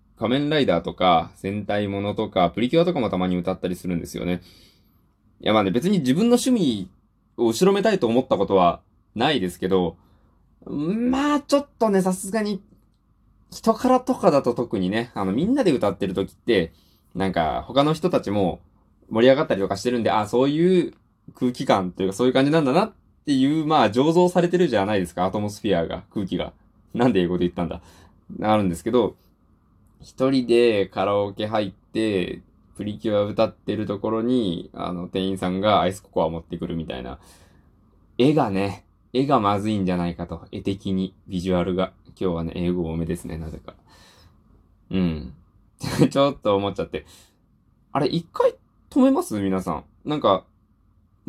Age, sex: 20-39, male